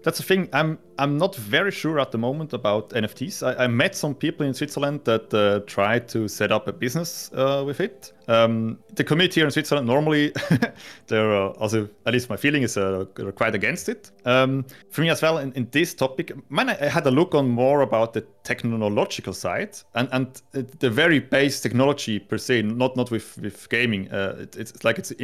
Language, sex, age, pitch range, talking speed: English, male, 30-49, 115-145 Hz, 210 wpm